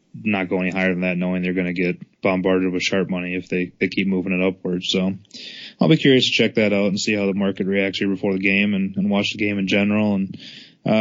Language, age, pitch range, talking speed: English, 20-39, 95-110 Hz, 265 wpm